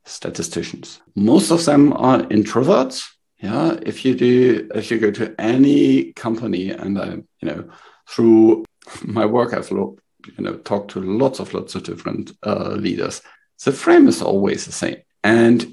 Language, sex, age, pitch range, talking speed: English, male, 50-69, 105-135 Hz, 165 wpm